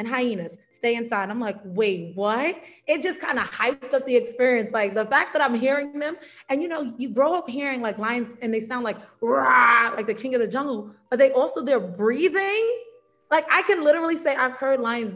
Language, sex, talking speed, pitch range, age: Swahili, female, 225 wpm, 210-260 Hz, 20-39